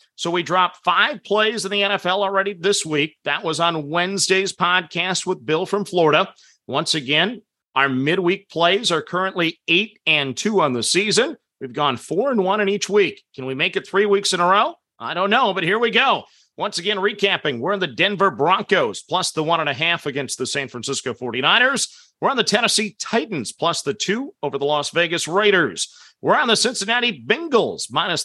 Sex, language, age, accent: male, English, 40-59, American